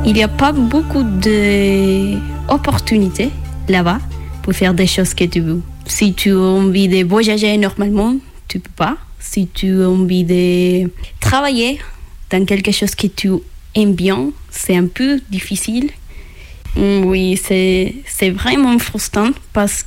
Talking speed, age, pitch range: 140 wpm, 20-39, 190-230 Hz